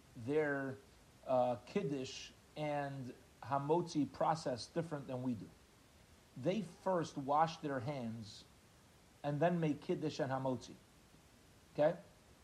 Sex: male